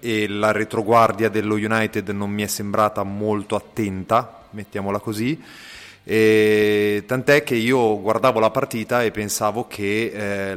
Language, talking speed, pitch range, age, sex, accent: Italian, 135 wpm, 100-115 Hz, 30-49, male, native